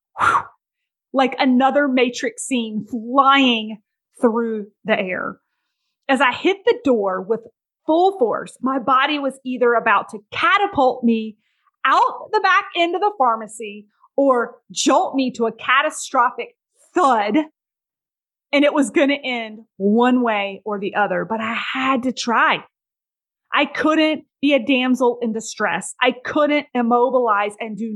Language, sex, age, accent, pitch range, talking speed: English, female, 30-49, American, 220-290 Hz, 140 wpm